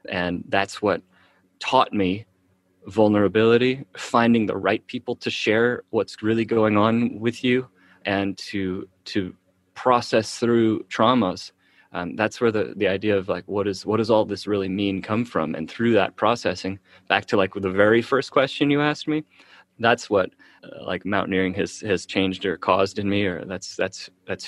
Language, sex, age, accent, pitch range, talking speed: English, male, 20-39, American, 95-120 Hz, 180 wpm